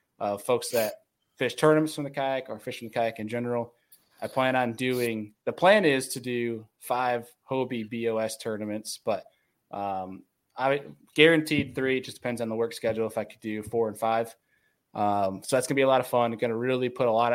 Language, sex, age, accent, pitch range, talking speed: English, male, 20-39, American, 110-130 Hz, 210 wpm